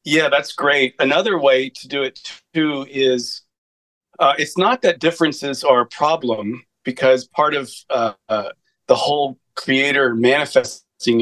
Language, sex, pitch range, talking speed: English, male, 115-135 Hz, 145 wpm